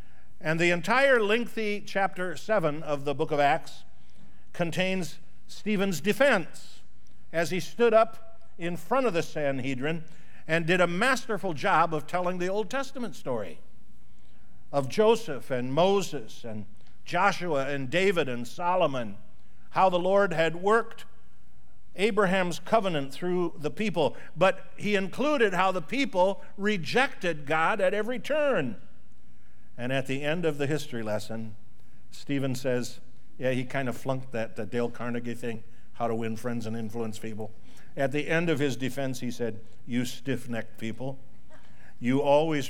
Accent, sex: American, male